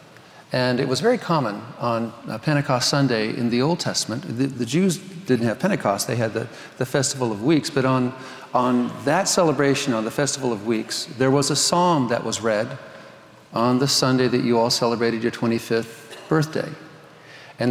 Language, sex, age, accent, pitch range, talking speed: English, male, 40-59, American, 115-145 Hz, 180 wpm